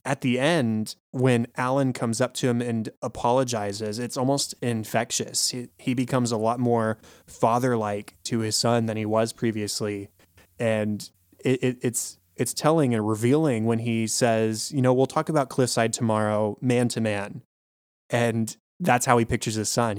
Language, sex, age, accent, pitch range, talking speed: English, male, 20-39, American, 110-125 Hz, 170 wpm